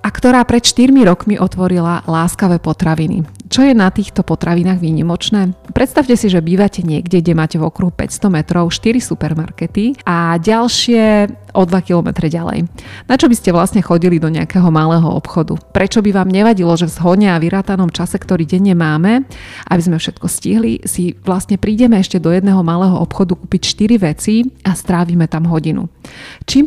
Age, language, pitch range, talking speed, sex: 30-49, Slovak, 170-205 Hz, 170 wpm, female